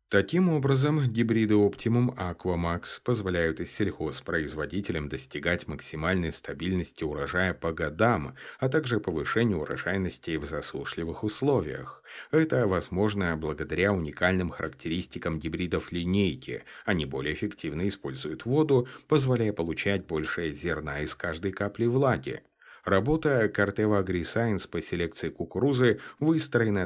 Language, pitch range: Russian, 85-120 Hz